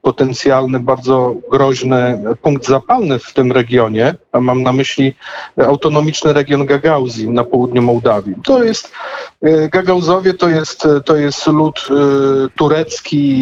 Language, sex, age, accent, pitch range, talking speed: Polish, male, 40-59, native, 130-150 Hz, 125 wpm